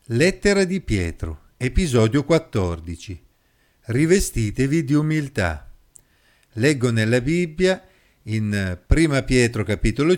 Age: 50-69